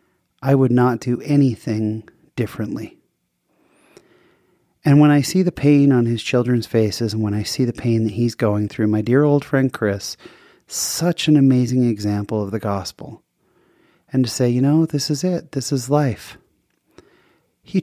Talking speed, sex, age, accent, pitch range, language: 170 wpm, male, 30-49, American, 110-135 Hz, English